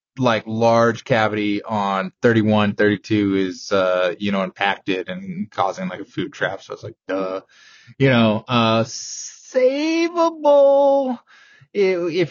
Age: 20-39